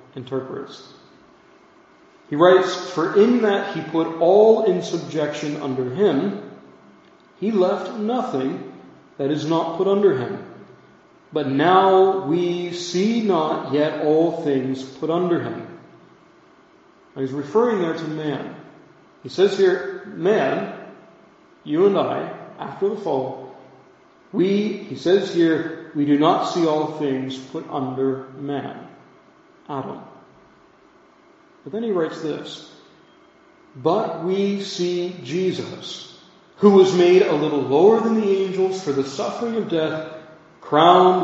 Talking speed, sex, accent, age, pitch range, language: 125 wpm, male, American, 40-59, 150-210 Hz, English